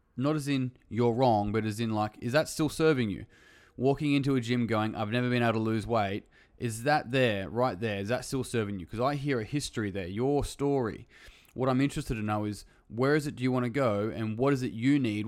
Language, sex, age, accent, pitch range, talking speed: English, male, 20-39, Australian, 100-125 Hz, 250 wpm